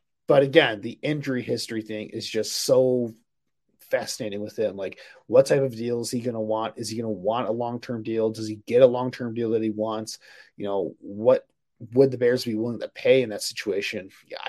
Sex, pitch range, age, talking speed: male, 115-145 Hz, 30-49, 220 wpm